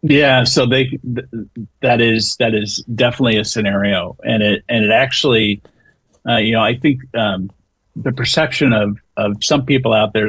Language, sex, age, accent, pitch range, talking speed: English, male, 40-59, American, 100-120 Hz, 175 wpm